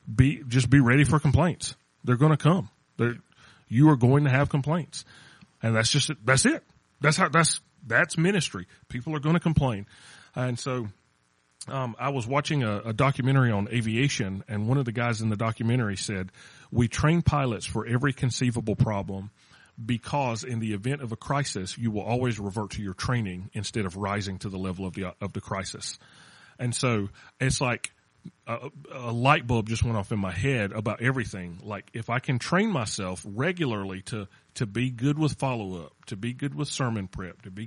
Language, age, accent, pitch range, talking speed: English, 30-49, American, 105-140 Hz, 190 wpm